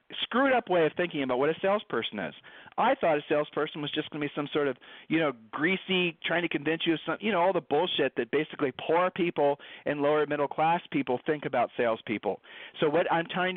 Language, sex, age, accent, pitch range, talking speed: English, male, 40-59, American, 135-175 Hz, 225 wpm